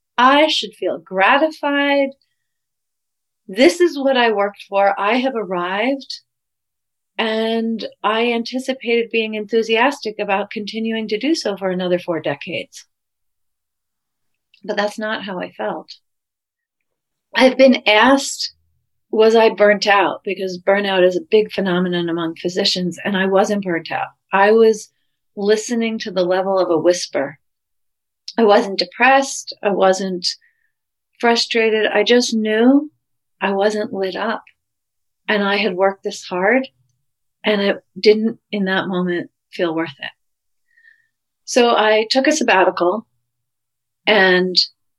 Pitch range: 180-225 Hz